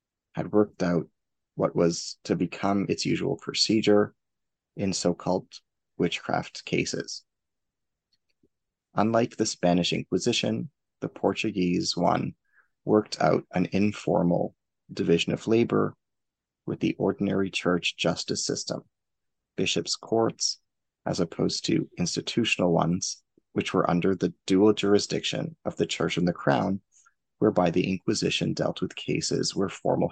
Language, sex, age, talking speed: English, male, 30-49, 120 wpm